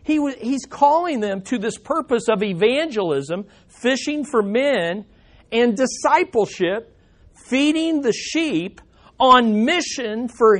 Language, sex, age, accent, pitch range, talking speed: English, male, 50-69, American, 165-230 Hz, 110 wpm